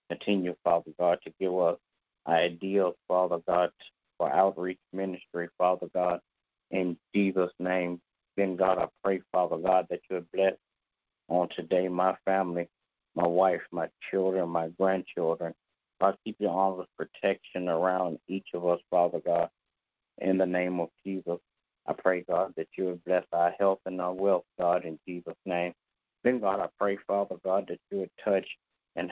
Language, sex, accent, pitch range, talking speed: English, male, American, 85-95 Hz, 170 wpm